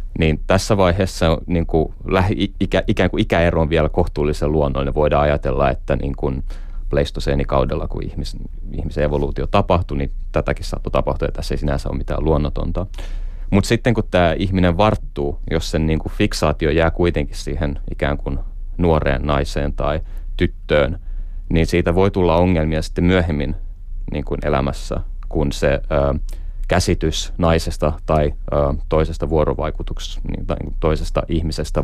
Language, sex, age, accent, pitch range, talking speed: Finnish, male, 30-49, native, 75-90 Hz, 140 wpm